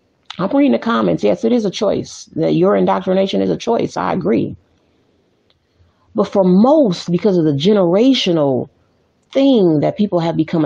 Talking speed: 165 wpm